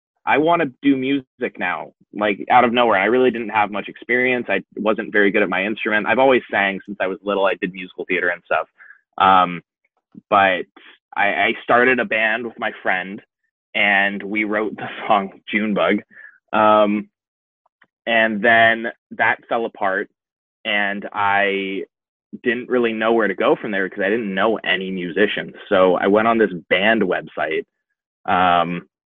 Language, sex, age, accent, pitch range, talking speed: English, male, 20-39, American, 100-125 Hz, 170 wpm